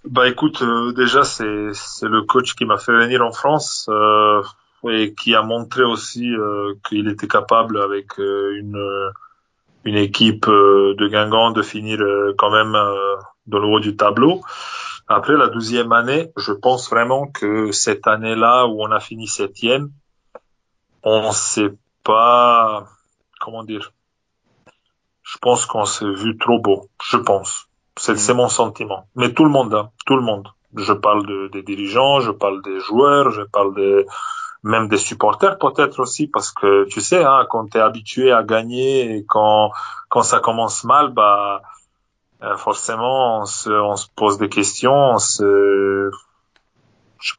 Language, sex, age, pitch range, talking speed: French, male, 20-39, 100-125 Hz, 165 wpm